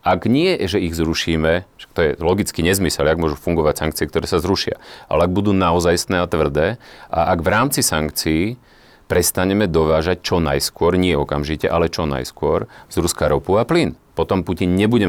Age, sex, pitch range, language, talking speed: 40-59, male, 80-95 Hz, Slovak, 175 wpm